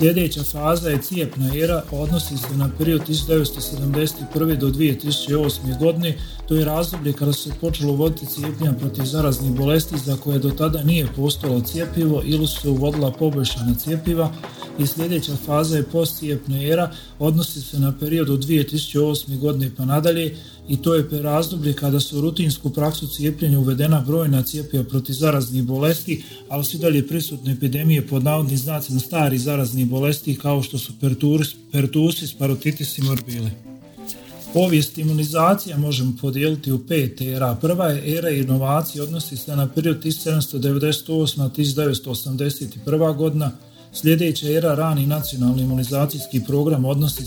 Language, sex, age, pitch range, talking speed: Croatian, male, 40-59, 135-155 Hz, 135 wpm